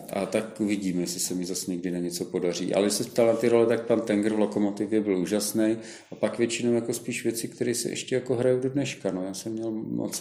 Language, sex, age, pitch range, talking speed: Czech, male, 40-59, 100-110 Hz, 240 wpm